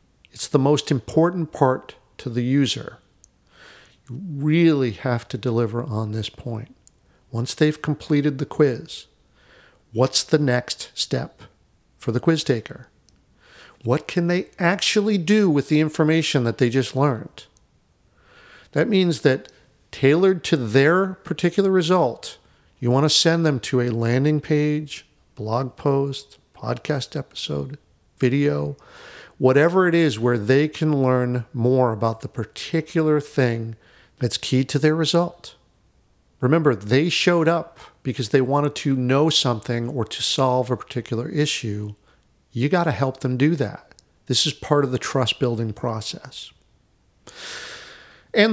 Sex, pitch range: male, 120-155 Hz